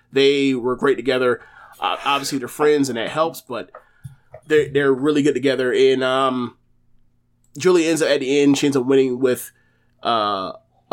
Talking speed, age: 170 wpm, 30-49